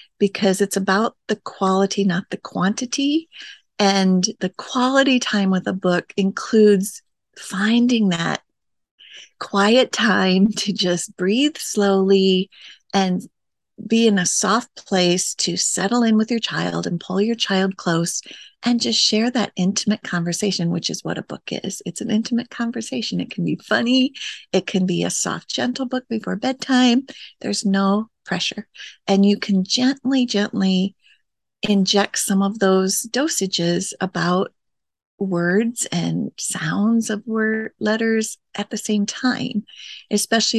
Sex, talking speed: female, 140 wpm